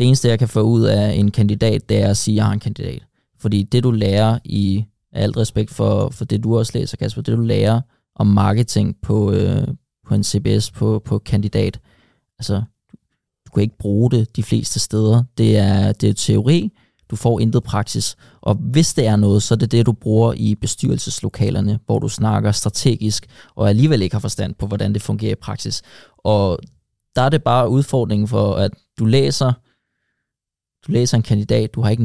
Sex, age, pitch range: male, 20-39, 105-125 Hz